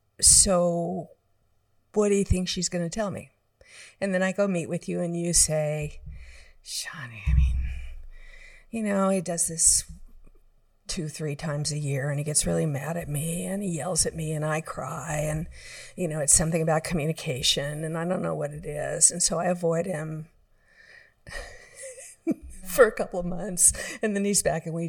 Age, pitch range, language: 50-69, 150-180 Hz, English